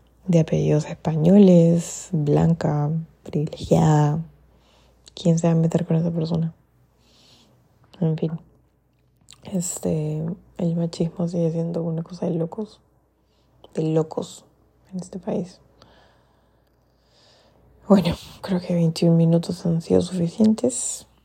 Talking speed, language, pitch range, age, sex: 105 wpm, Spanish, 150-175 Hz, 20-39, female